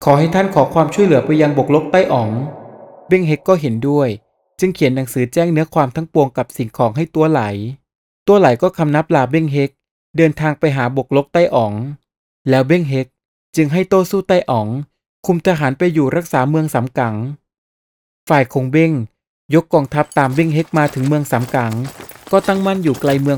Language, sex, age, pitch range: Thai, male, 20-39, 130-165 Hz